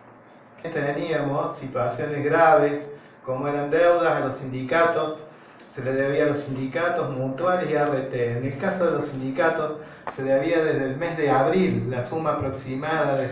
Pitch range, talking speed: 130-155 Hz, 160 wpm